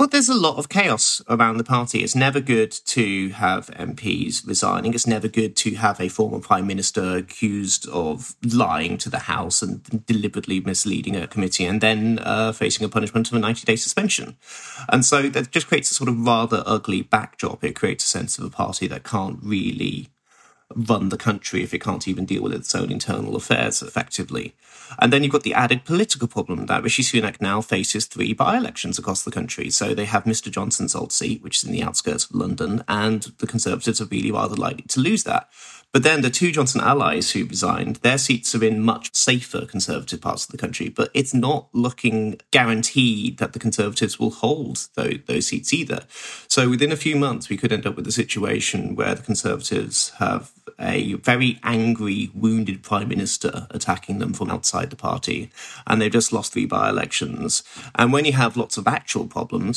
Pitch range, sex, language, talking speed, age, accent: 110-130 Hz, male, English, 200 wpm, 30-49, British